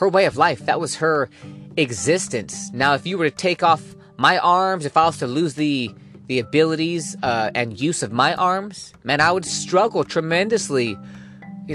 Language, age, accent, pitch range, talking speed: English, 20-39, American, 130-185 Hz, 190 wpm